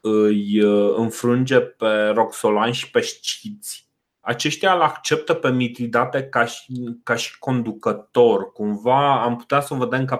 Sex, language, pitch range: male, Romanian, 110-135 Hz